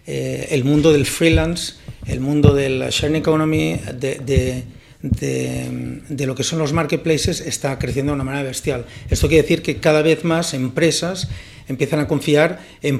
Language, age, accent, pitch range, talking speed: Spanish, 40-59, Spanish, 130-160 Hz, 175 wpm